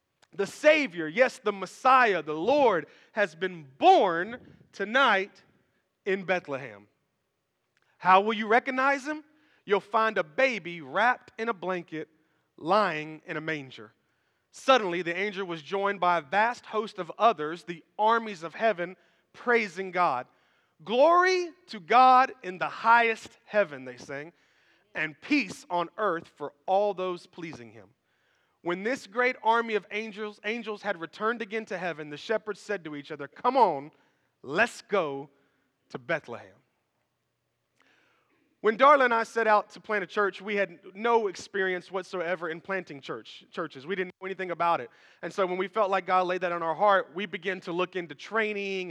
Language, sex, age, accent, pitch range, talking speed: English, male, 40-59, American, 175-230 Hz, 160 wpm